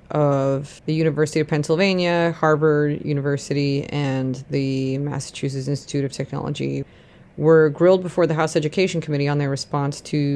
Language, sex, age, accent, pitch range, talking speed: English, female, 30-49, American, 140-160 Hz, 140 wpm